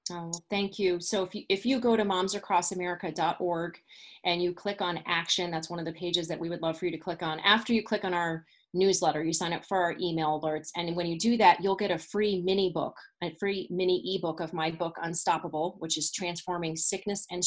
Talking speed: 230 wpm